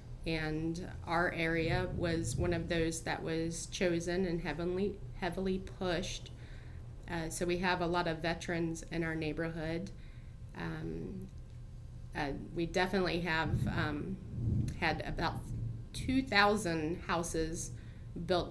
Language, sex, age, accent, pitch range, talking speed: English, female, 30-49, American, 125-175 Hz, 115 wpm